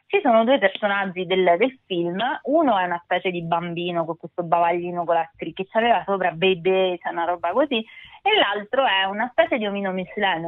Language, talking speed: Italian, 190 wpm